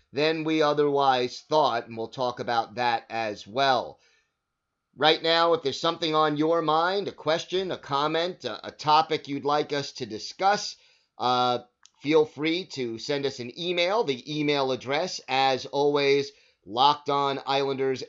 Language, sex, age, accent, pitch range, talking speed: English, male, 30-49, American, 125-150 Hz, 150 wpm